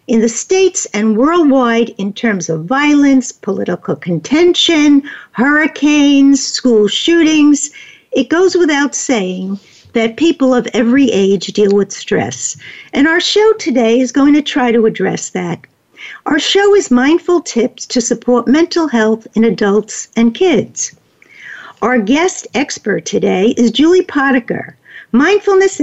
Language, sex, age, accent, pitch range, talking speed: English, female, 60-79, American, 225-315 Hz, 135 wpm